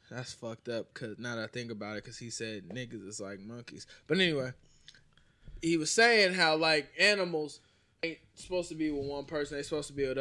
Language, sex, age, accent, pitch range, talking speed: English, male, 20-39, American, 140-185 Hz, 225 wpm